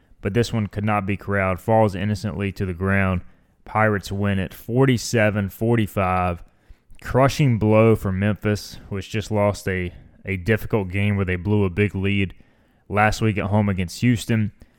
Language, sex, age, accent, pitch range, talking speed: English, male, 20-39, American, 95-110 Hz, 160 wpm